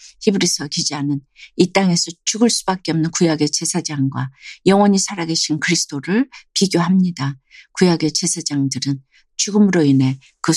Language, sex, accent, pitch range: Korean, female, native, 150-205 Hz